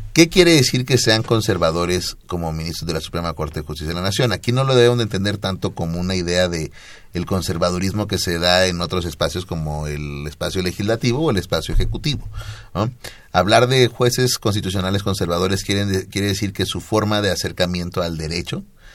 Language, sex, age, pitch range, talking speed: Spanish, male, 30-49, 85-110 Hz, 190 wpm